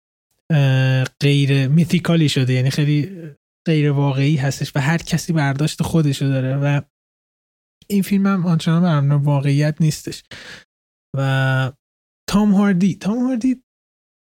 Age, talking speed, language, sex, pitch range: 20-39, 110 wpm, Persian, male, 135-175 Hz